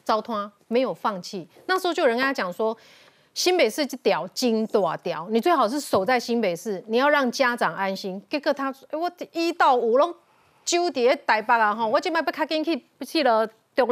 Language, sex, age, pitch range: Chinese, female, 30-49, 210-290 Hz